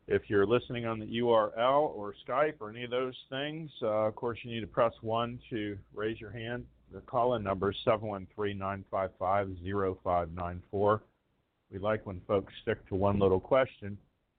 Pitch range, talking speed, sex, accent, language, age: 90-110 Hz, 165 wpm, male, American, English, 40-59